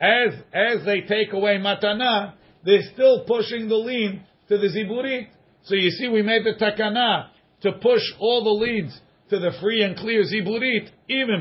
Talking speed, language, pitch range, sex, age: 175 wpm, English, 165-210 Hz, male, 50-69